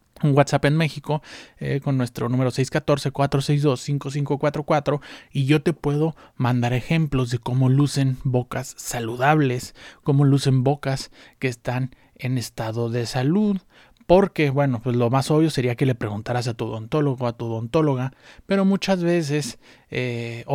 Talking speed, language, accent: 145 wpm, Spanish, Mexican